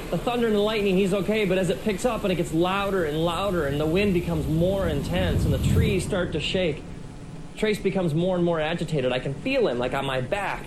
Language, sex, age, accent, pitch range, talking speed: English, male, 30-49, American, 145-195 Hz, 245 wpm